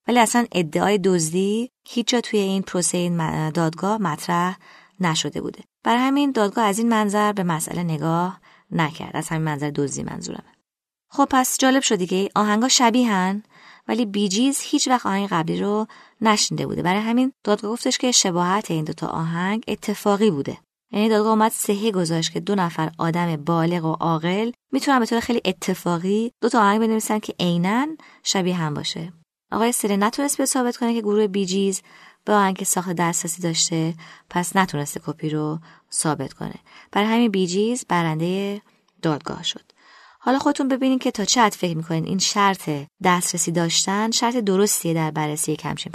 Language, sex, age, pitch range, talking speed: Persian, female, 20-39, 170-220 Hz, 165 wpm